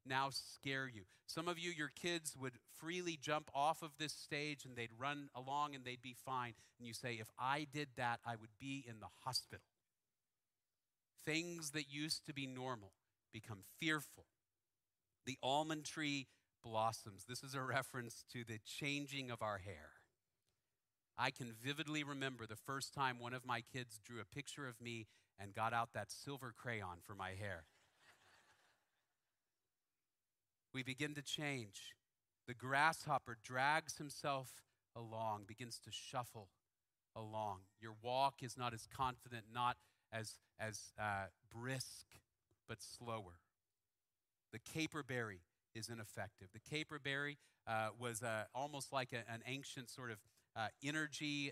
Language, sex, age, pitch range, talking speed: English, male, 40-59, 110-135 Hz, 150 wpm